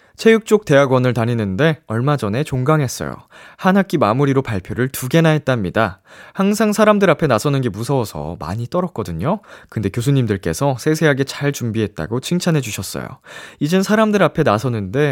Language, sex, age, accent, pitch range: Korean, male, 20-39, native, 100-145 Hz